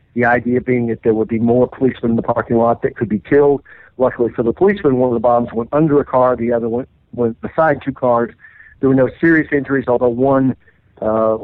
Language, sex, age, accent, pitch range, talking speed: English, male, 50-69, American, 115-130 Hz, 230 wpm